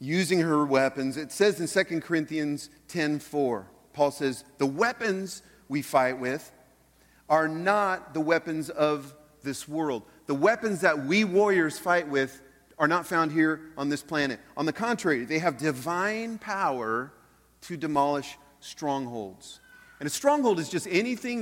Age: 40-59